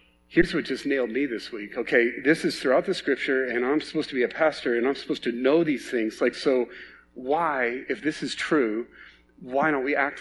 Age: 40-59